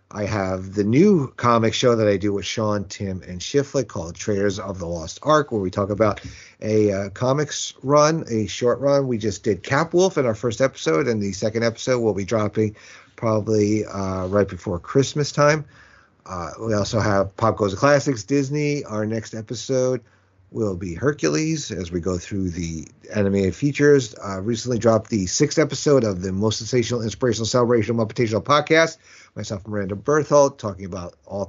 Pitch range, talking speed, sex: 100-140 Hz, 185 wpm, male